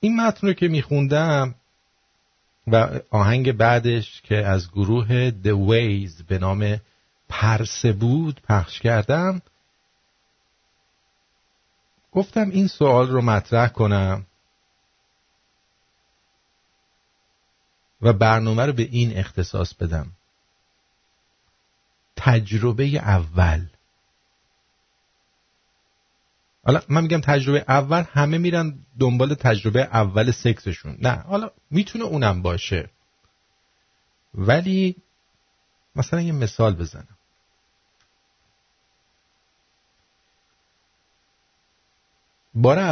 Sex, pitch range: male, 100-135 Hz